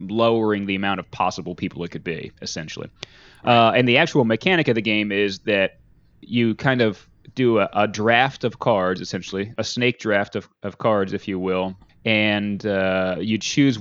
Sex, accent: male, American